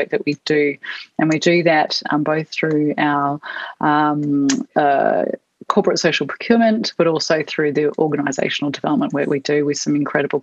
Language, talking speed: English, 160 wpm